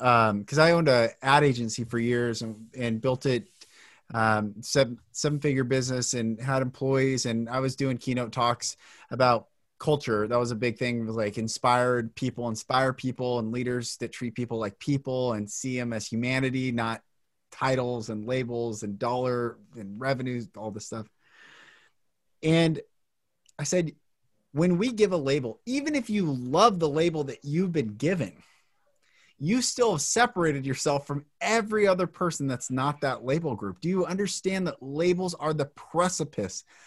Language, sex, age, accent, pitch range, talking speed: English, male, 30-49, American, 120-170 Hz, 165 wpm